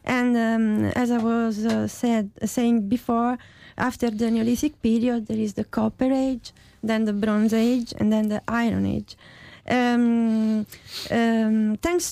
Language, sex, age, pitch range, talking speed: English, female, 30-49, 215-245 Hz, 155 wpm